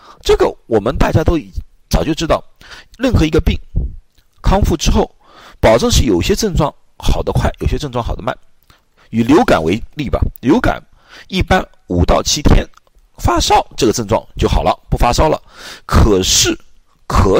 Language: Chinese